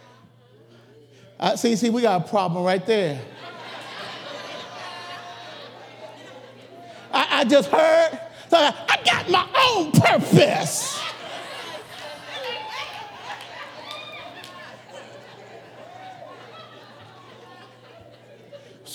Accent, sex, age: American, male, 50-69